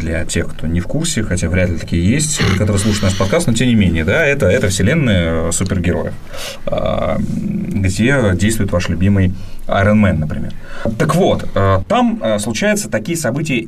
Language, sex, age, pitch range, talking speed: Russian, male, 30-49, 90-115 Hz, 160 wpm